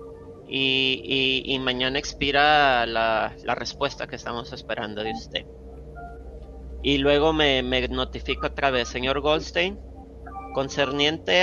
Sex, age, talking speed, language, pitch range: male, 30-49, 120 wpm, Spanish, 110-145 Hz